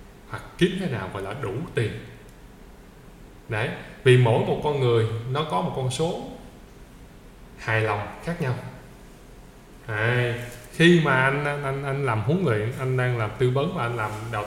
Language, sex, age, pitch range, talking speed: Vietnamese, male, 20-39, 115-150 Hz, 165 wpm